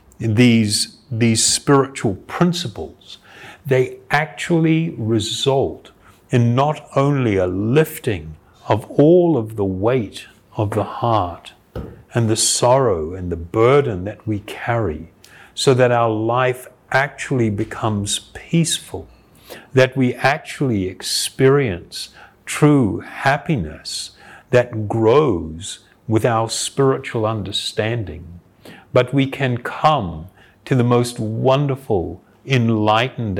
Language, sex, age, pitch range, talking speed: English, male, 50-69, 105-130 Hz, 100 wpm